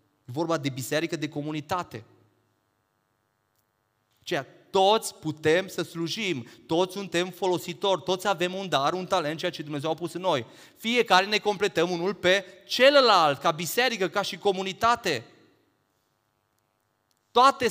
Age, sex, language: 30-49, male, Romanian